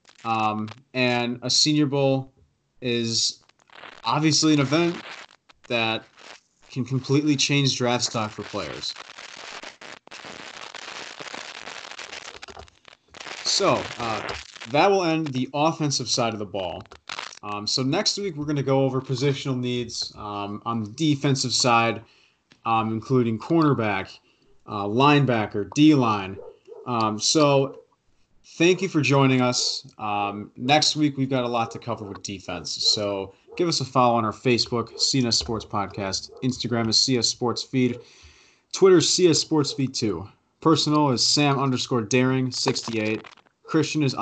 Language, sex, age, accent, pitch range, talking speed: English, male, 30-49, American, 110-145 Hz, 130 wpm